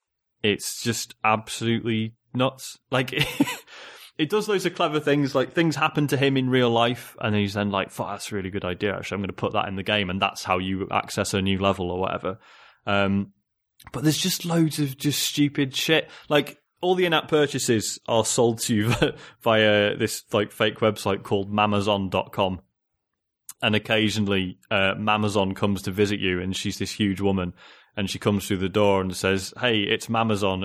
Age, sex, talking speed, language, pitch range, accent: 20-39, male, 190 wpm, English, 105-125 Hz, British